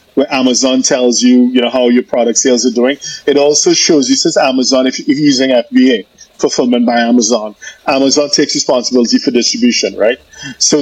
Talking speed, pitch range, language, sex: 175 wpm, 125-150 Hz, English, male